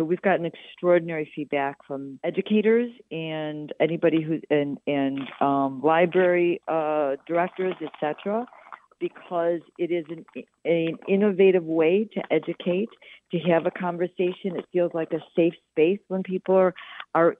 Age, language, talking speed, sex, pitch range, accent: 50-69, English, 135 wpm, female, 160-190 Hz, American